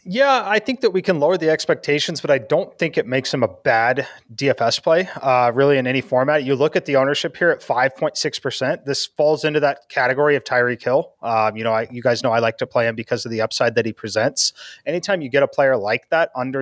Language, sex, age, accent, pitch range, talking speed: English, male, 30-49, American, 120-145 Hz, 240 wpm